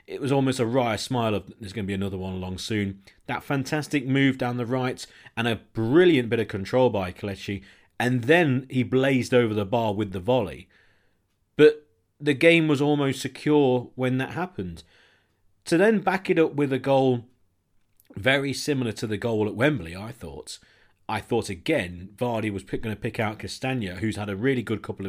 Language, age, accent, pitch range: English, 40-59, British, 100-145 Hz